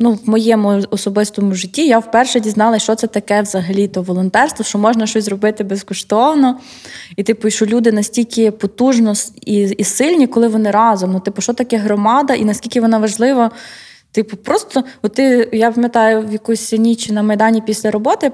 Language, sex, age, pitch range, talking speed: Ukrainian, female, 20-39, 215-260 Hz, 170 wpm